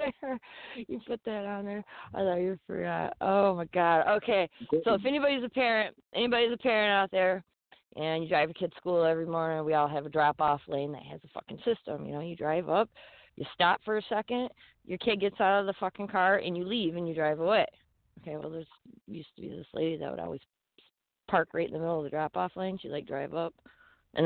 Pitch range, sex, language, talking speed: 155-205 Hz, female, English, 235 wpm